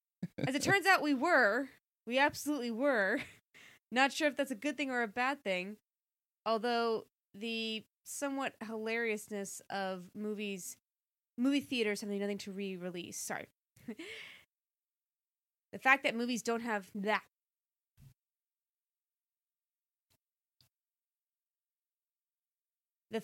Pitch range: 195-235 Hz